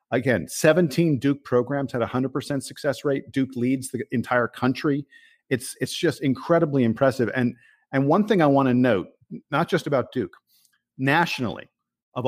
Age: 50-69